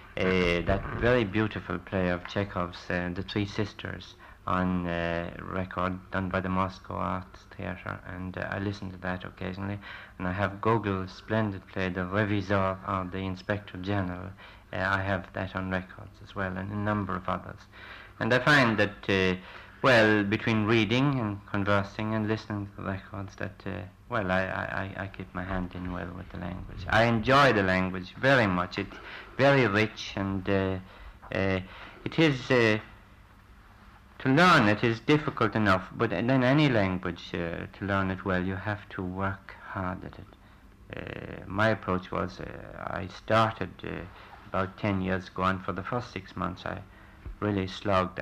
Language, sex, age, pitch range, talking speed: English, male, 60-79, 95-105 Hz, 175 wpm